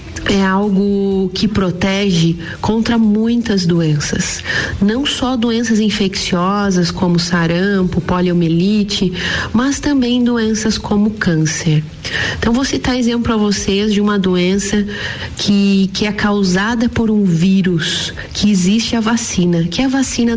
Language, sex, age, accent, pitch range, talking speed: Portuguese, female, 40-59, Brazilian, 185-225 Hz, 125 wpm